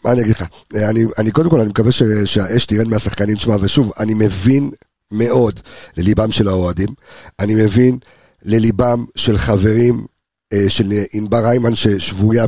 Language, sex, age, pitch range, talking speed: Hebrew, male, 50-69, 105-135 Hz, 155 wpm